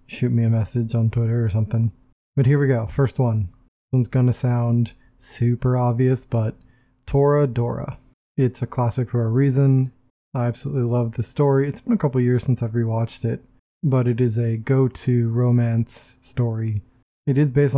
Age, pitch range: 20-39, 115-130 Hz